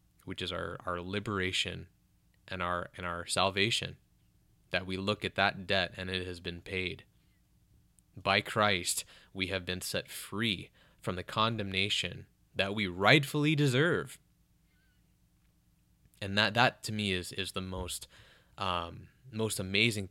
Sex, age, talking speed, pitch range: male, 20-39, 140 wpm, 90-110 Hz